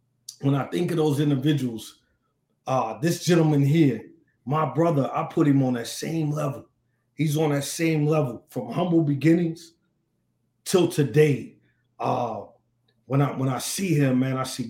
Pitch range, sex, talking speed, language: 125-155 Hz, male, 160 wpm, English